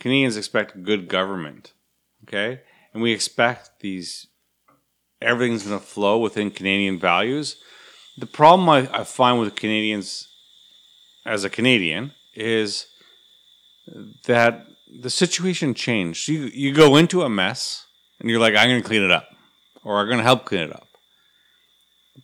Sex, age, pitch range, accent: male, 40-59, 95-125 Hz, American